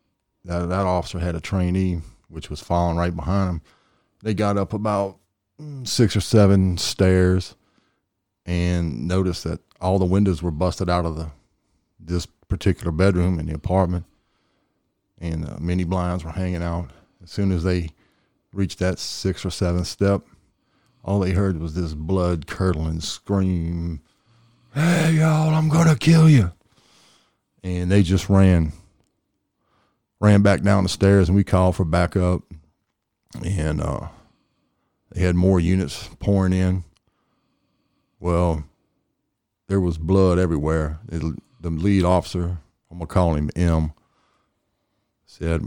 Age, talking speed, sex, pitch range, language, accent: 40-59, 135 wpm, male, 85-95 Hz, English, American